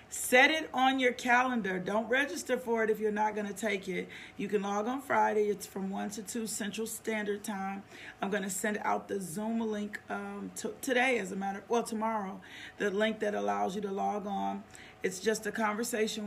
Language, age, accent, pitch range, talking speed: English, 40-59, American, 195-220 Hz, 210 wpm